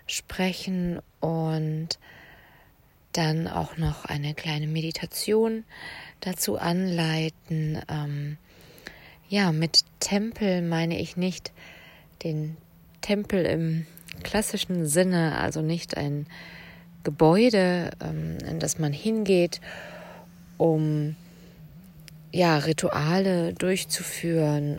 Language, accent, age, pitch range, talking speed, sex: German, German, 20-39, 150-175 Hz, 80 wpm, female